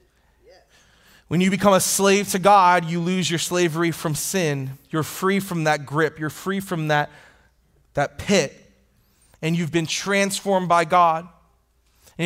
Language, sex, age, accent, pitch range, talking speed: English, male, 30-49, American, 145-185 Hz, 150 wpm